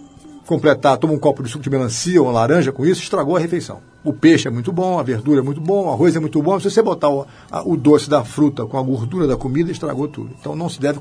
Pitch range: 125-155 Hz